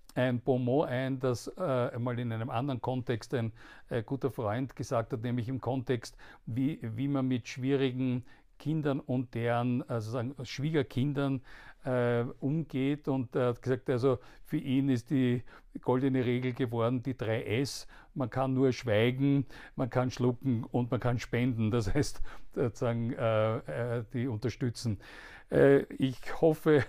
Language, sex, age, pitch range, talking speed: German, male, 50-69, 120-140 Hz, 145 wpm